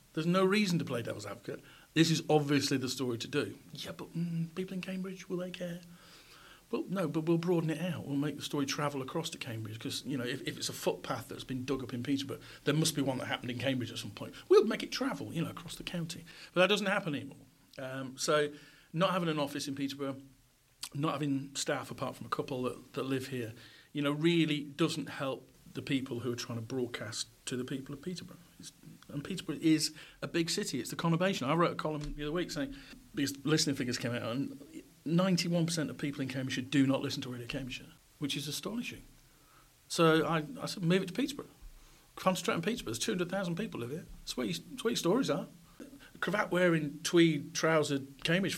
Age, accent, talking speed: 40-59, British, 220 wpm